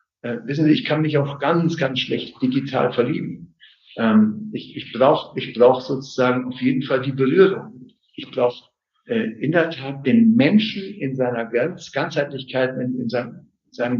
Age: 60-79